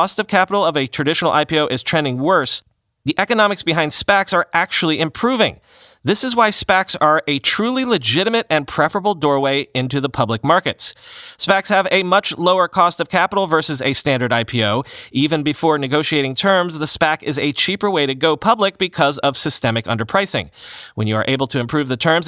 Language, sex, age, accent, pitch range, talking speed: English, male, 30-49, American, 130-180 Hz, 185 wpm